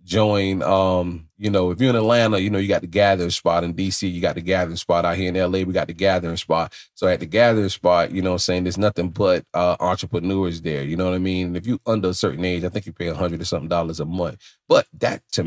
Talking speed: 275 wpm